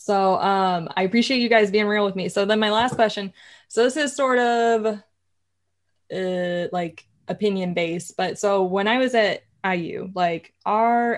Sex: female